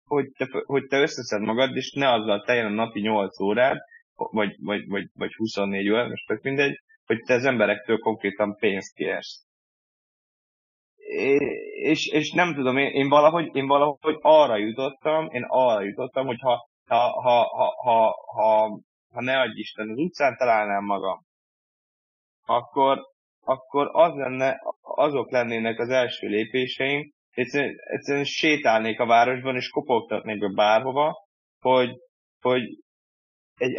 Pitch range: 110-145 Hz